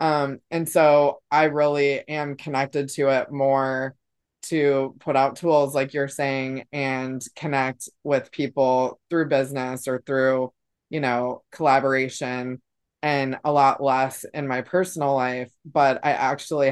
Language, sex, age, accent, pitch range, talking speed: English, female, 20-39, American, 135-160 Hz, 140 wpm